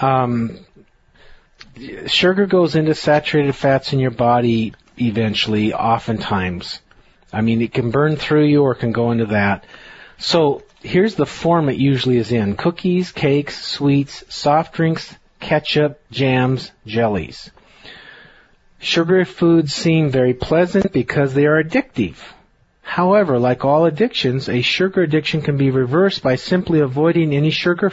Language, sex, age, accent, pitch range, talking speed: English, male, 40-59, American, 130-165 Hz, 135 wpm